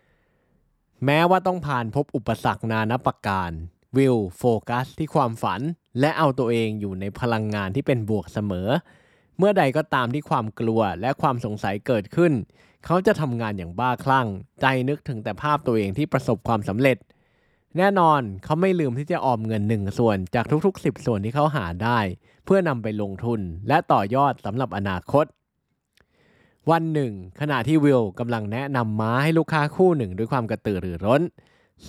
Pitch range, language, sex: 105-150 Hz, Thai, male